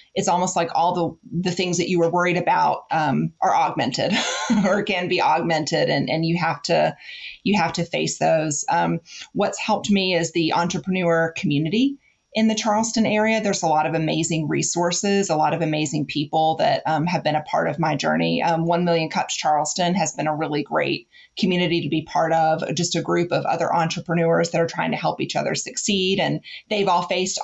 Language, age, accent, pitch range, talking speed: English, 30-49, American, 155-175 Hz, 205 wpm